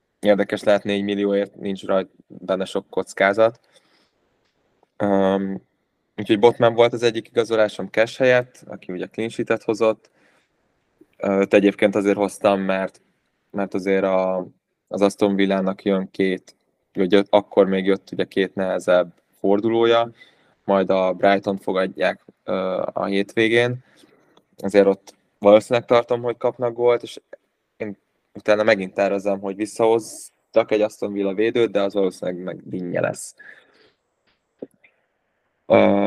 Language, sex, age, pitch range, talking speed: Hungarian, male, 20-39, 95-110 Hz, 120 wpm